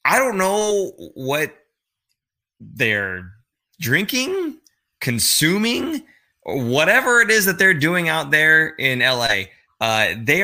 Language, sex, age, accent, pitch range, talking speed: English, male, 20-39, American, 105-145 Hz, 115 wpm